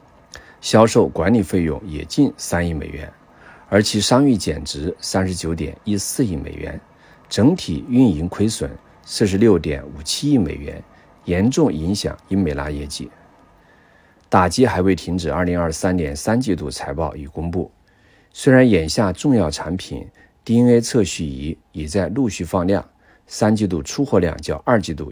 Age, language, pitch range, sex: 50-69, Chinese, 80-105 Hz, male